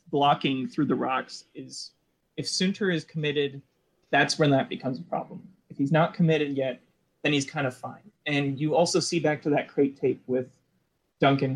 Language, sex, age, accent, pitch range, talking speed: English, male, 20-39, American, 135-160 Hz, 185 wpm